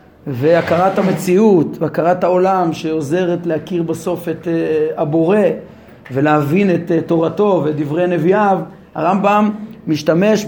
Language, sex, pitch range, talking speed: Hebrew, male, 155-200 Hz, 90 wpm